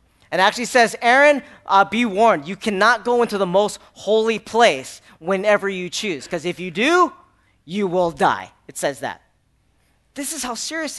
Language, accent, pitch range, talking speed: English, American, 165-215 Hz, 175 wpm